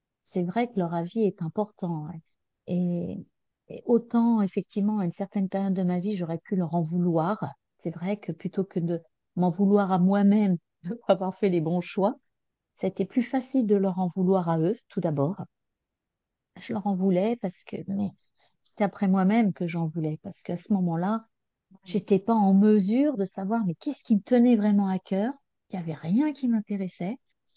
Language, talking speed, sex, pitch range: French, 200 wpm, female, 180-225 Hz